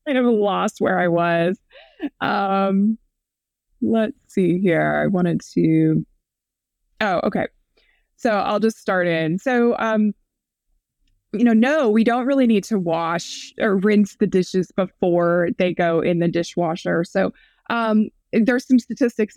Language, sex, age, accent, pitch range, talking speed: English, female, 20-39, American, 180-235 Hz, 145 wpm